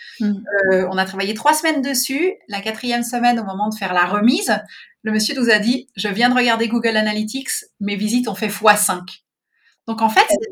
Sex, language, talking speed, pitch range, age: female, French, 205 wpm, 195-255 Hz, 30-49